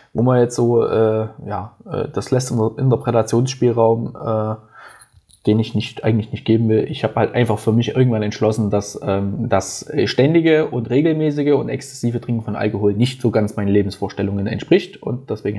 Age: 20-39